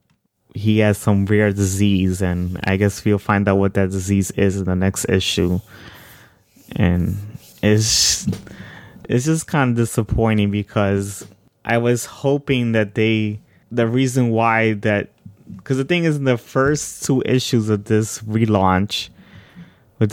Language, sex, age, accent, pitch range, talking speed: English, male, 20-39, American, 100-115 Hz, 150 wpm